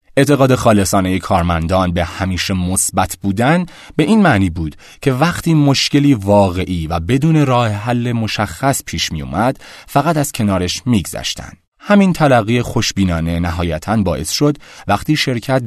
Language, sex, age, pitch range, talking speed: Persian, male, 30-49, 90-125 Hz, 140 wpm